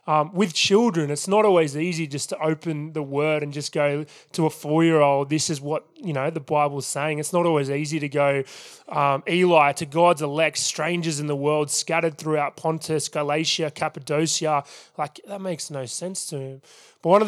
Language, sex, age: English, male, 20-39